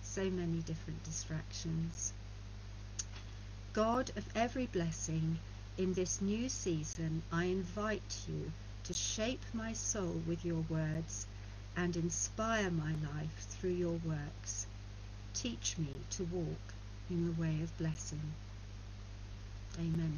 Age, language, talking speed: 60-79, English, 115 wpm